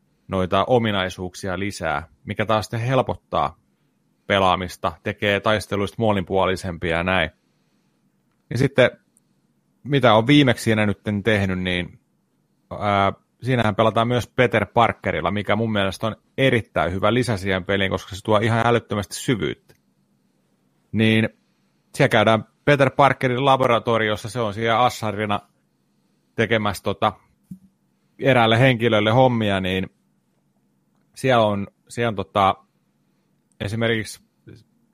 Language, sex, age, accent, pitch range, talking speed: Finnish, male, 30-49, native, 95-120 Hz, 115 wpm